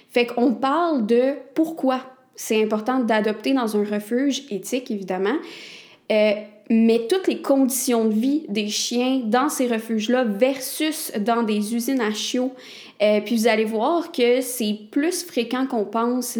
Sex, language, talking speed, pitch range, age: female, French, 155 wpm, 220-260 Hz, 20-39